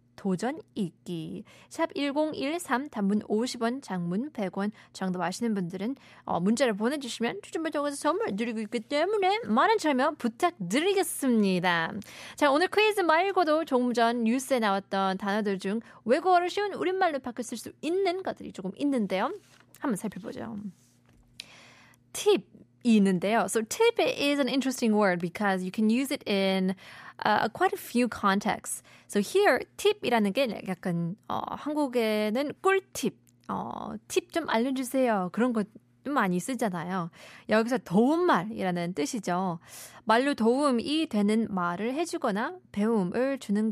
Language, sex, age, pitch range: Korean, female, 20-39, 195-280 Hz